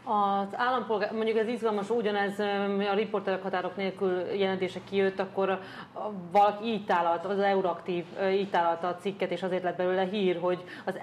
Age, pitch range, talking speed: 30-49, 175-200 Hz, 150 wpm